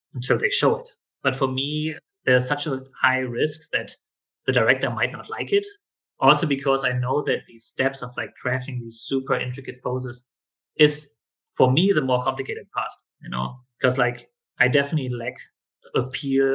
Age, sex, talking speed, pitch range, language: 30-49, male, 175 wpm, 120-140 Hz, English